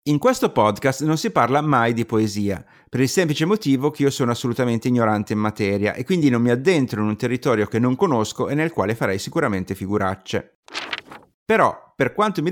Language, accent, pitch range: Italian, native, 115-155 Hz